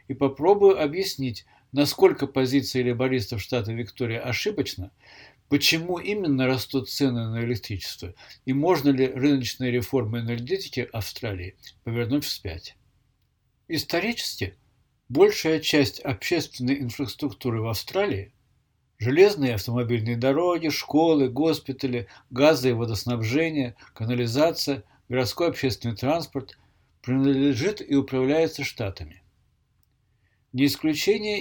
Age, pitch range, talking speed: 60-79, 115-145 Hz, 100 wpm